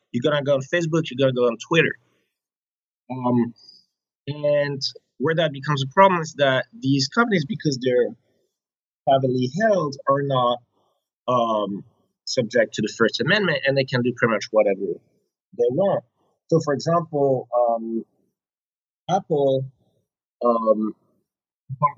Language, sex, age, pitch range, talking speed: English, male, 30-49, 120-145 Hz, 140 wpm